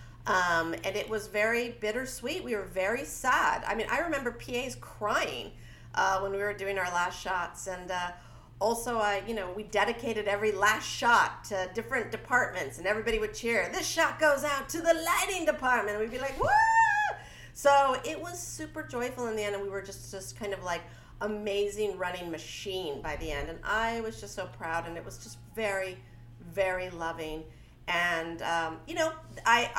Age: 50-69